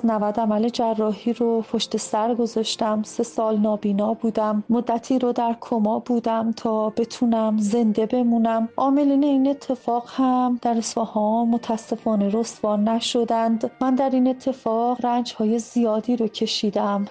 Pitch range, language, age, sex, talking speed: 220-245 Hz, Persian, 40-59, female, 130 wpm